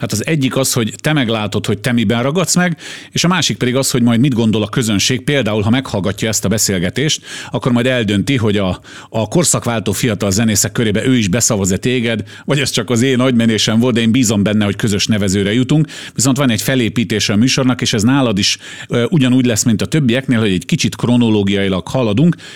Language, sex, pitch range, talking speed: Hungarian, male, 105-135 Hz, 205 wpm